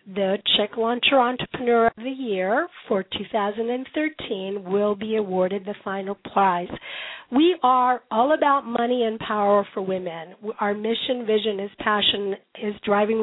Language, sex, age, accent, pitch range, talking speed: English, female, 50-69, American, 205-250 Hz, 140 wpm